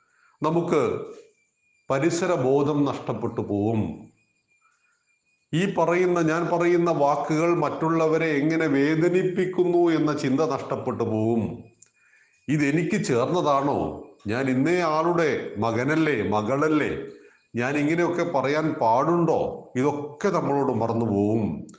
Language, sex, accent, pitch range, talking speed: Malayalam, male, native, 130-170 Hz, 80 wpm